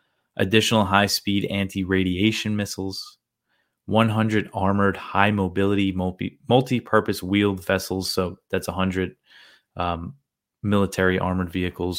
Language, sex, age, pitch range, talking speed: English, male, 20-39, 90-100 Hz, 85 wpm